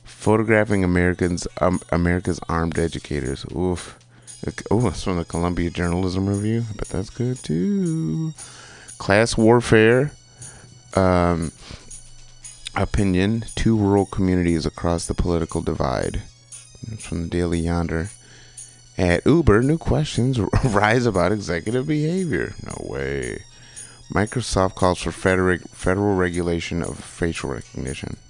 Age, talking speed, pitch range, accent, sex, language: 30-49, 110 wpm, 85-120 Hz, American, male, English